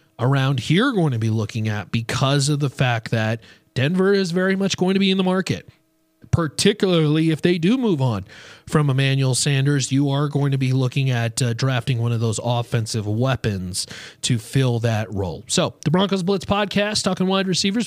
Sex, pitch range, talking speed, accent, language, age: male, 125-180 Hz, 190 wpm, American, English, 30-49